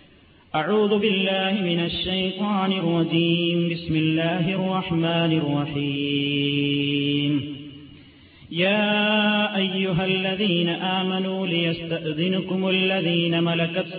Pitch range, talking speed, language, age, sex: 155-190 Hz, 70 wpm, Malayalam, 40-59, male